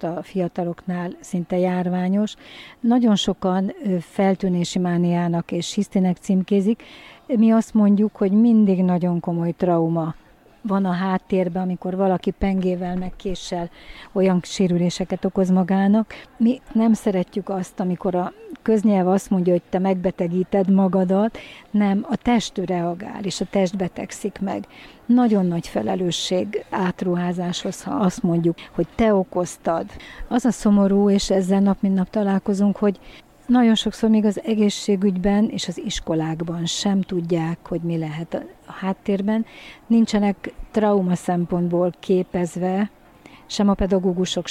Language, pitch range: Hungarian, 180-205 Hz